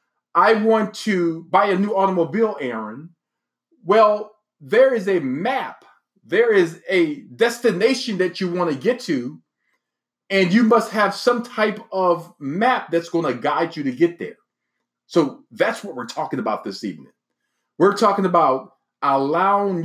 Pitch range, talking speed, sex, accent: 140-220 Hz, 155 wpm, male, American